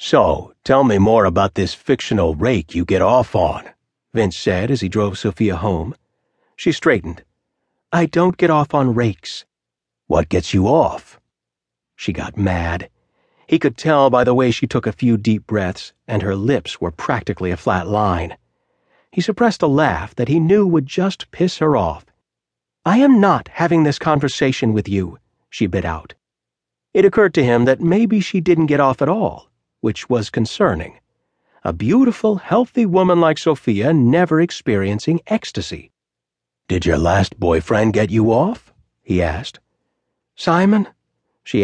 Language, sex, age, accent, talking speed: English, male, 40-59, American, 160 wpm